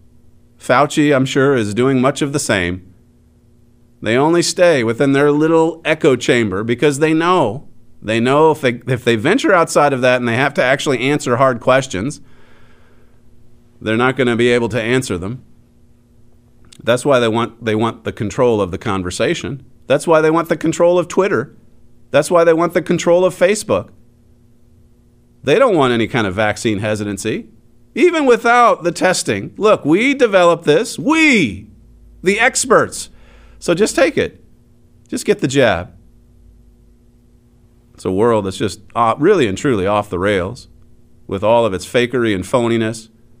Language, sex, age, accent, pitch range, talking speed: English, male, 40-59, American, 110-145 Hz, 160 wpm